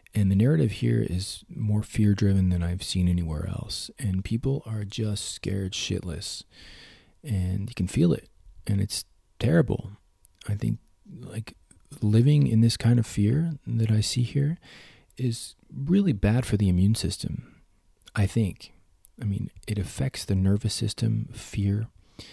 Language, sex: English, male